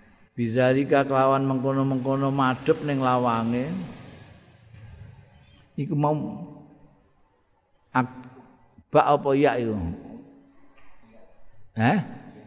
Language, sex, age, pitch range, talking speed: Indonesian, male, 50-69, 115-135 Hz, 65 wpm